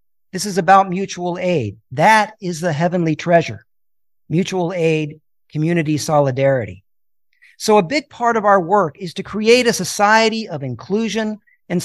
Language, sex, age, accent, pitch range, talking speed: English, male, 50-69, American, 150-195 Hz, 145 wpm